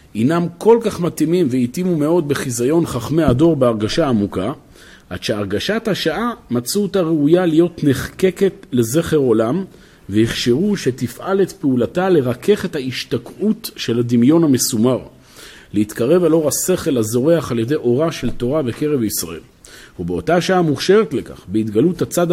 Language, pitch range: Hebrew, 120-170 Hz